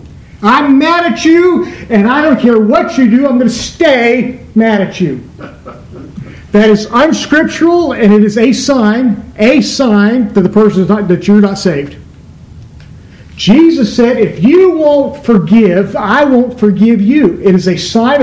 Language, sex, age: English, male, 50-69